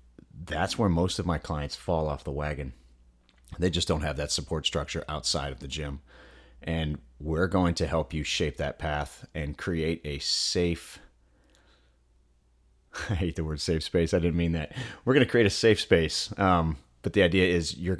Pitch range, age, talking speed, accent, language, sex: 70-85 Hz, 30-49, 190 wpm, American, English, male